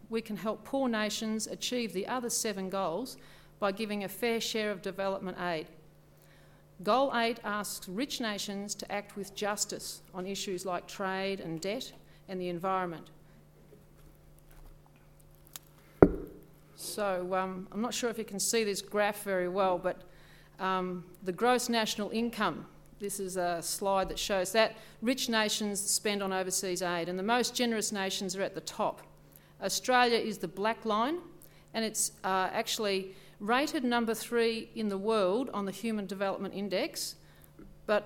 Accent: Australian